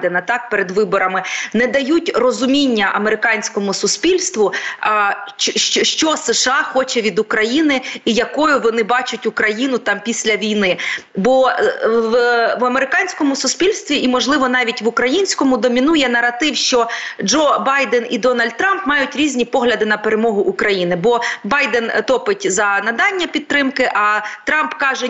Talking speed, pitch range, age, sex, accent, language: 130 wpm, 225-285 Hz, 30-49, female, native, Ukrainian